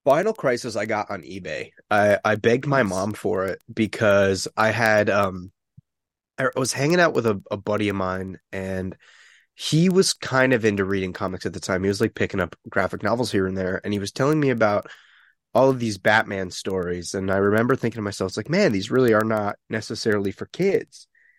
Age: 20-39